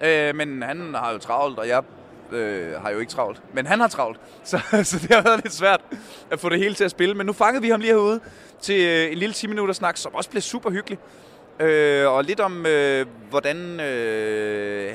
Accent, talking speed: native, 220 wpm